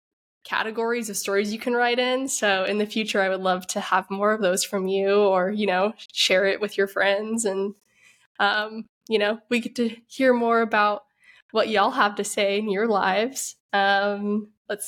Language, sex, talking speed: English, female, 200 wpm